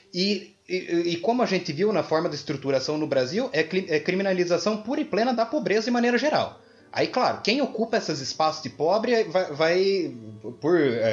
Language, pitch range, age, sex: Portuguese, 130-180 Hz, 20-39, male